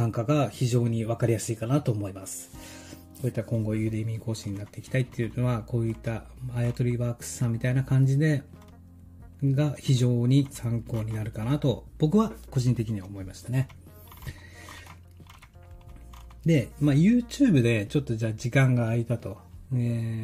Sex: male